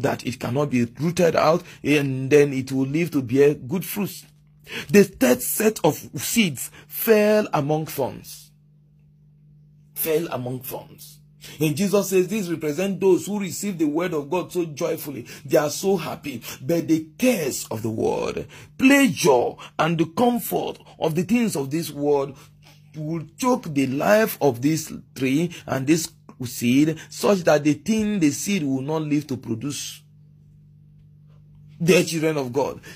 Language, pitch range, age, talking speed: English, 150-185 Hz, 40-59, 155 wpm